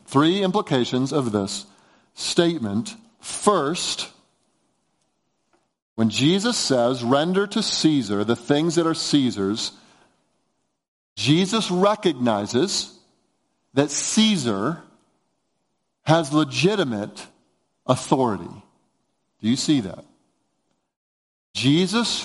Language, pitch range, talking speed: English, 145-200 Hz, 80 wpm